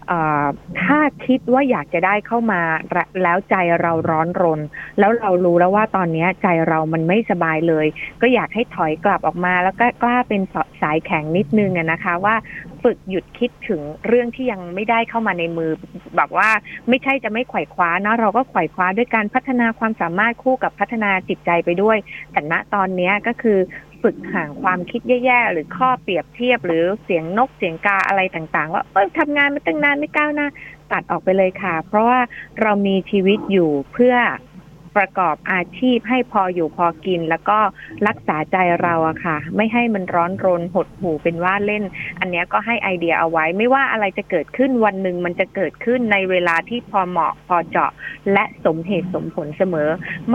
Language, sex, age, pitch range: Thai, female, 20-39, 170-220 Hz